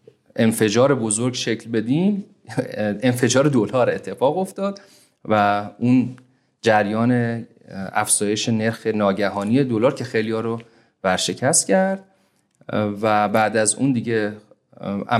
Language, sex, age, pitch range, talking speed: Persian, male, 30-49, 100-130 Hz, 100 wpm